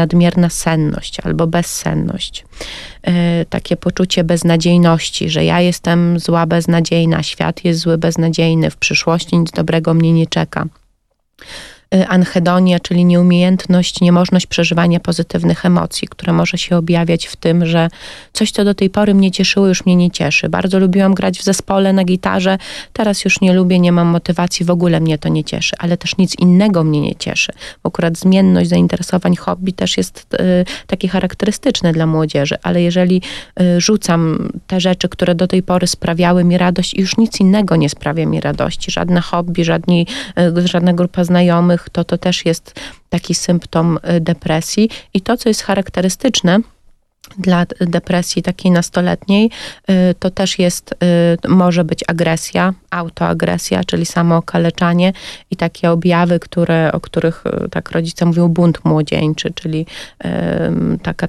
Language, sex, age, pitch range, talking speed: Polish, female, 30-49, 165-185 Hz, 150 wpm